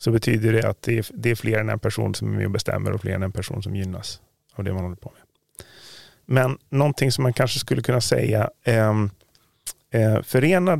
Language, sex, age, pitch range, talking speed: Swedish, male, 30-49, 105-130 Hz, 210 wpm